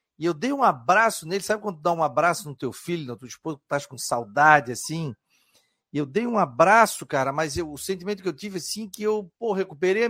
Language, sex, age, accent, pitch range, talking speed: Portuguese, male, 40-59, Brazilian, 135-185 Hz, 245 wpm